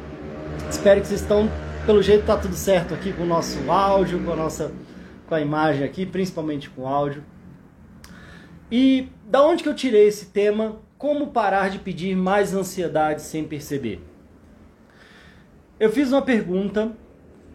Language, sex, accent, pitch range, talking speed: Portuguese, male, Brazilian, 160-240 Hz, 155 wpm